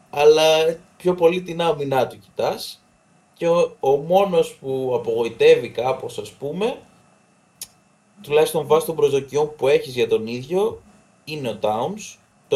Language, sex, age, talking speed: Greek, male, 20-39, 135 wpm